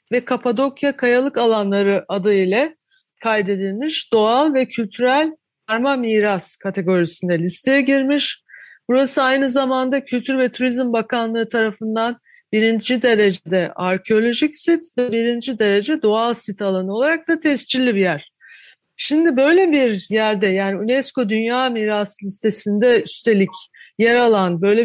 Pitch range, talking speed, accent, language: 205-260 Hz, 125 wpm, native, Turkish